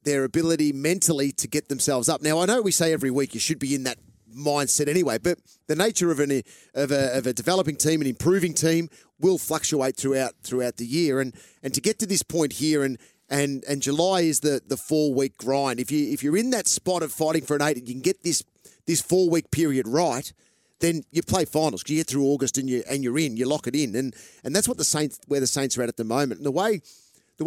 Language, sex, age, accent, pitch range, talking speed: English, male, 40-59, Australian, 135-165 Hz, 255 wpm